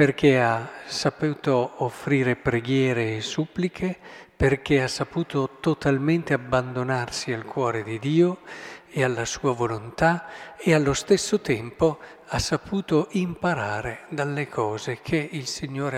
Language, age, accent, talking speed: Italian, 50-69, native, 120 wpm